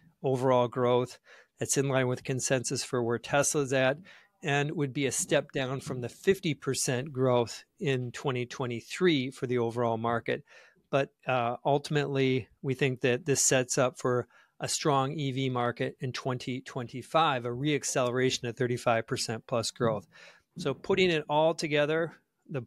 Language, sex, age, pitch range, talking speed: English, male, 40-59, 125-145 Hz, 145 wpm